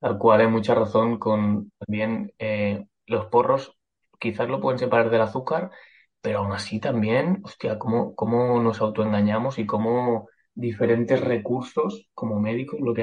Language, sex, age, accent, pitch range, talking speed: Spanish, male, 20-39, Spanish, 105-115 Hz, 150 wpm